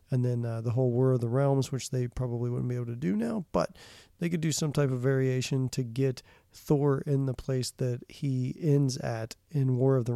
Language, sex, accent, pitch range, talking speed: English, male, American, 125-140 Hz, 235 wpm